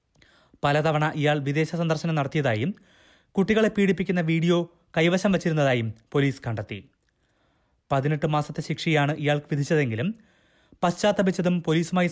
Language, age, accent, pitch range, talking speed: Malayalam, 20-39, native, 130-165 Hz, 95 wpm